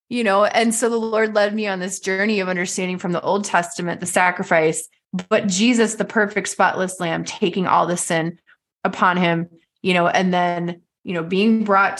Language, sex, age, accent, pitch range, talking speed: English, female, 20-39, American, 180-220 Hz, 195 wpm